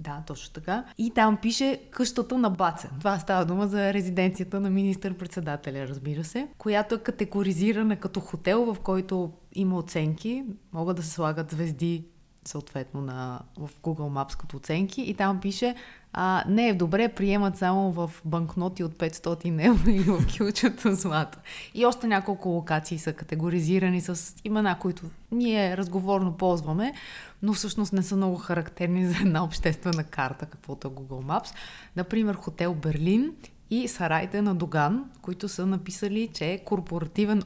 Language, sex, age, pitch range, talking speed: Bulgarian, female, 20-39, 160-200 Hz, 155 wpm